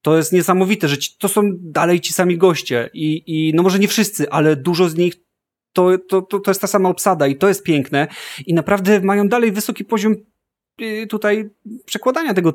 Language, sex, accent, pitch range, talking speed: Polish, male, native, 140-180 Hz, 200 wpm